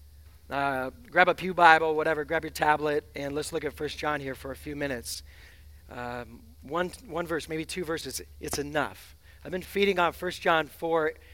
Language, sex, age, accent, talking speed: English, male, 40-59, American, 190 wpm